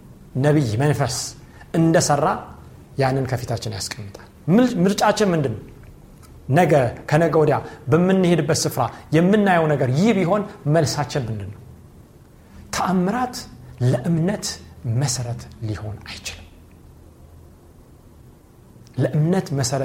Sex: male